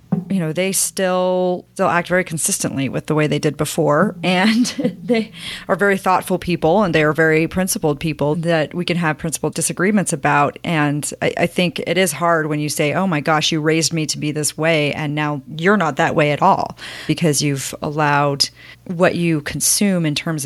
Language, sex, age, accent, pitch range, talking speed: English, female, 40-59, American, 155-185 Hz, 200 wpm